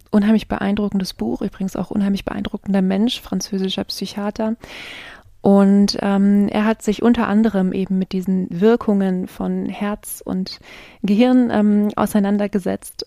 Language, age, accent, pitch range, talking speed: German, 20-39, German, 185-215 Hz, 125 wpm